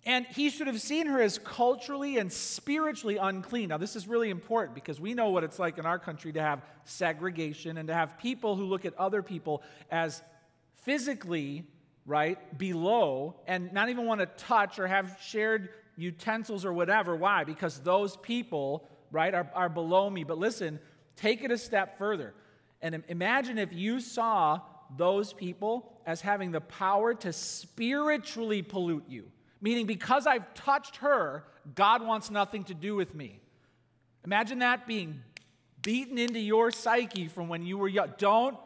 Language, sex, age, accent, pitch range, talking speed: English, male, 40-59, American, 160-220 Hz, 170 wpm